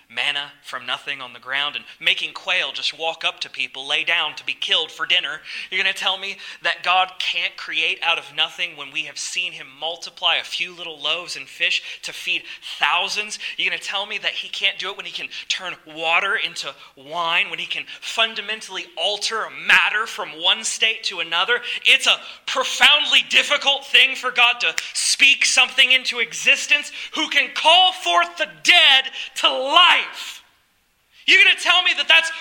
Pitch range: 175-290 Hz